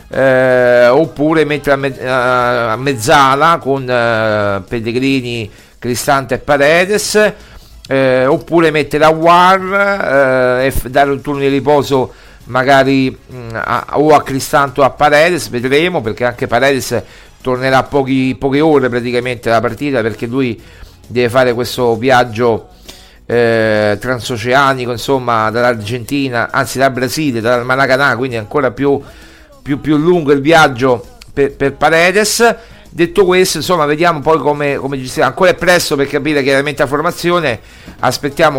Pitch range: 125-155 Hz